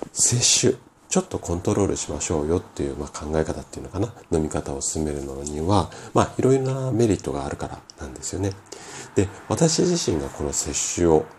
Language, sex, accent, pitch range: Japanese, male, native, 75-100 Hz